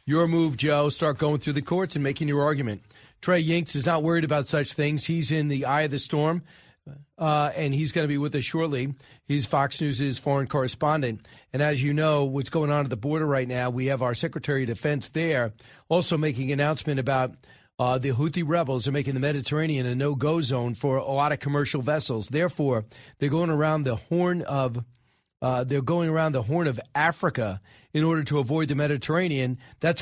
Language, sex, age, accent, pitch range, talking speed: English, male, 40-59, American, 135-170 Hz, 205 wpm